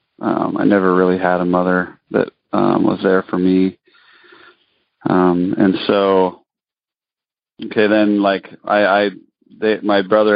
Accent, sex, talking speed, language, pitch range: American, male, 140 wpm, English, 90-105 Hz